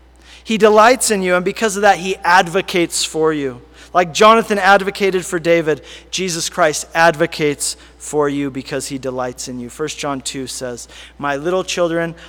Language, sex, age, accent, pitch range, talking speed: English, male, 40-59, American, 135-175 Hz, 165 wpm